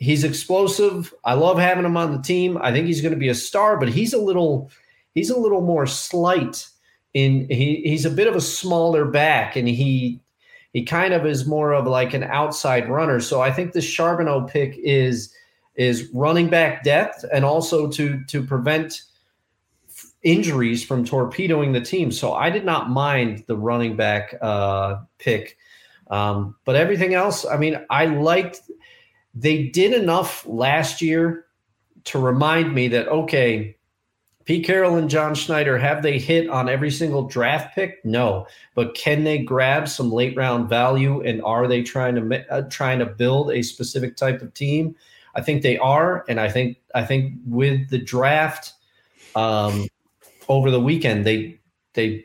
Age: 30-49